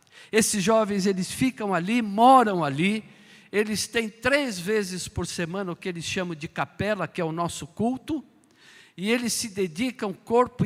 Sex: male